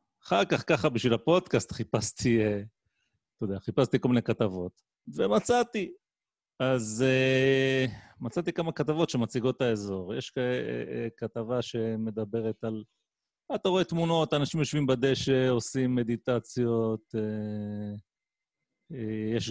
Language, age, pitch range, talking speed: Hebrew, 30-49, 105-135 Hz, 100 wpm